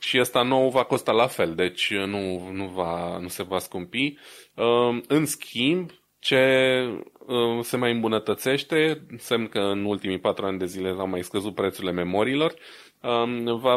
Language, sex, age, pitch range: Romanian, male, 20-39, 95-120 Hz